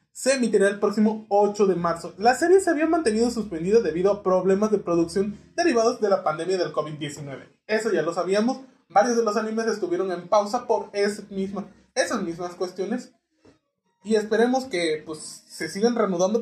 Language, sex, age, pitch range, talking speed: Spanish, male, 20-39, 180-245 Hz, 170 wpm